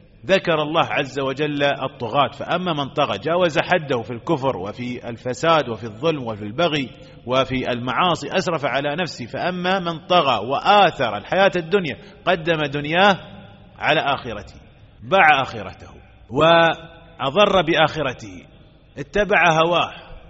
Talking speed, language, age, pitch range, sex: 115 wpm, English, 30-49, 130-180 Hz, male